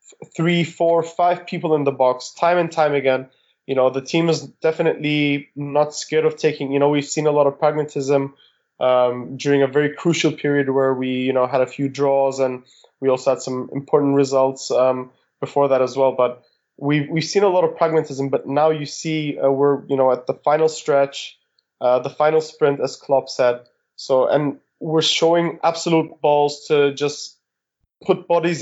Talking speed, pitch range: 195 wpm, 130-155 Hz